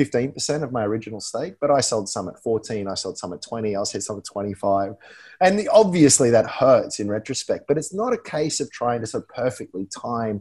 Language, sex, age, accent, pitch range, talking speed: English, male, 30-49, Australian, 105-140 Hz, 220 wpm